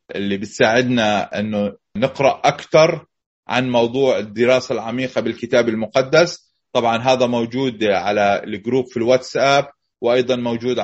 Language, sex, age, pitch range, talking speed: Arabic, male, 30-49, 115-130 Hz, 110 wpm